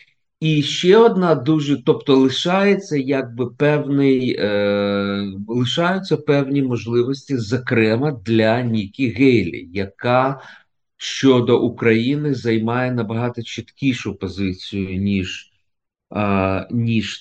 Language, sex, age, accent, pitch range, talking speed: Ukrainian, male, 50-69, native, 105-145 Hz, 90 wpm